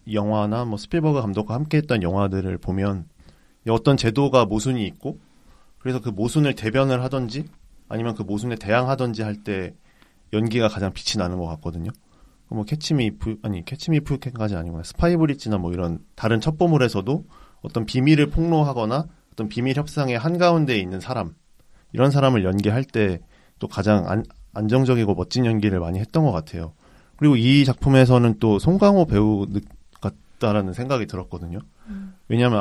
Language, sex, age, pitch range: Korean, male, 30-49, 100-140 Hz